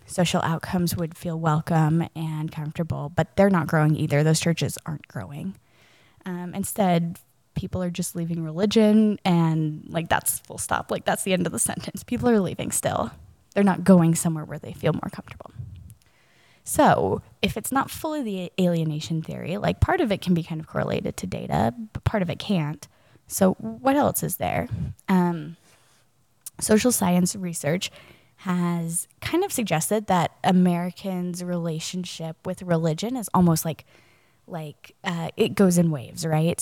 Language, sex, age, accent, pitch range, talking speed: English, female, 10-29, American, 160-195 Hz, 165 wpm